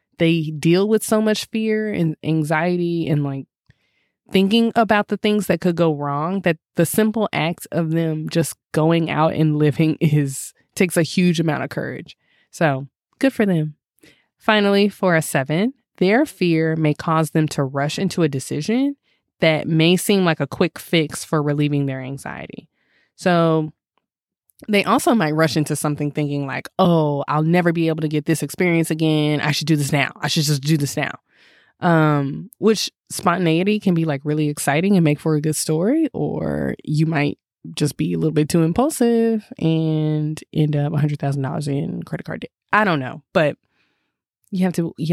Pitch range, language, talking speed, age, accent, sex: 150-185 Hz, English, 180 wpm, 20-39, American, female